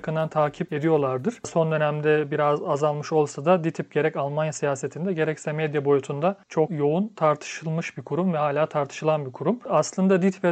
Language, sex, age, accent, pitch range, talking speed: Turkish, male, 40-59, native, 150-175 Hz, 155 wpm